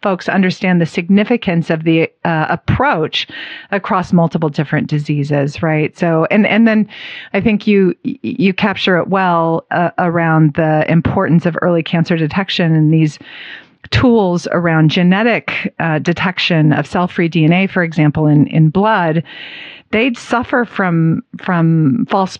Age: 50-69